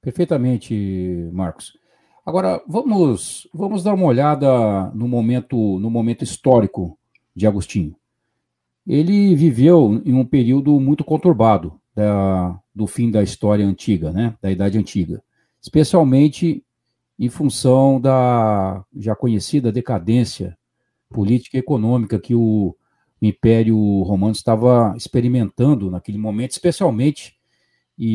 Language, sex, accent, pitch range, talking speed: Portuguese, male, Brazilian, 105-145 Hz, 105 wpm